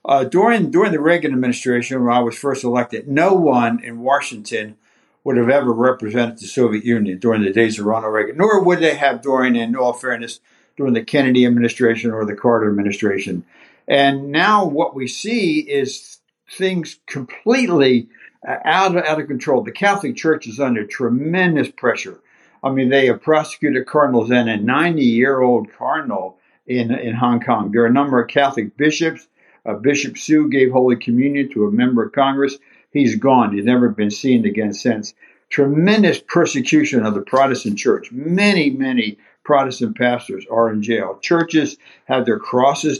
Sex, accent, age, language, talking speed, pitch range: male, American, 60-79, English, 170 wpm, 120-165 Hz